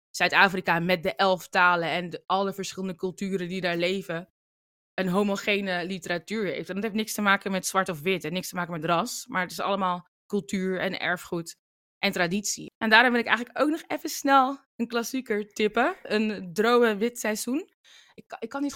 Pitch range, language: 180-220 Hz, Dutch